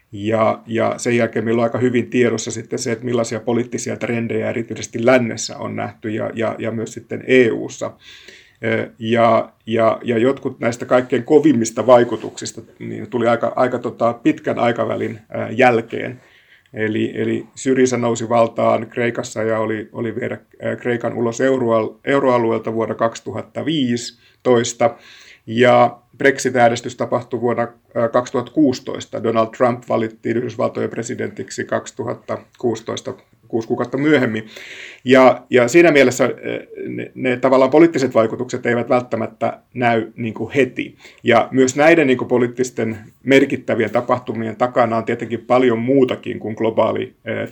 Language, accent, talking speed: Finnish, native, 130 wpm